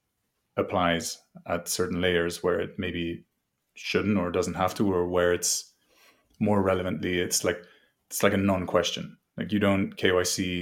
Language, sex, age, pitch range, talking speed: English, male, 30-49, 85-95 Hz, 155 wpm